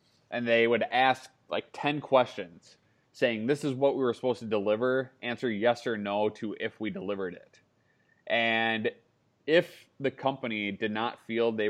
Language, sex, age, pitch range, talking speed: English, male, 20-39, 110-125 Hz, 170 wpm